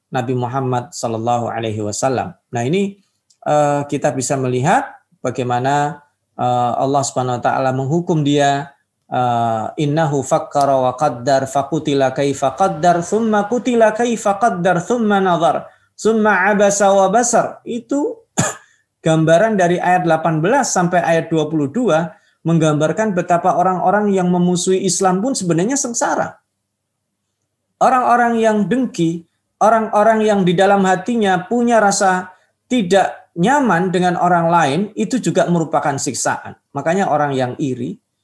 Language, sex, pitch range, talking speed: Indonesian, male, 135-195 Hz, 120 wpm